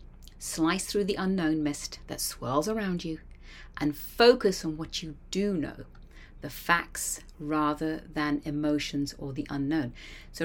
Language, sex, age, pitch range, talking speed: English, female, 40-59, 140-190 Hz, 145 wpm